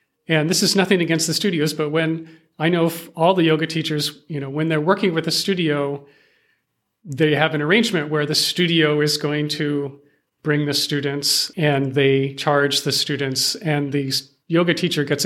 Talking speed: 185 wpm